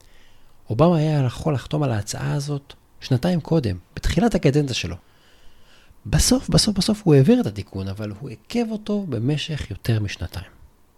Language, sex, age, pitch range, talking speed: Hebrew, male, 40-59, 105-150 Hz, 140 wpm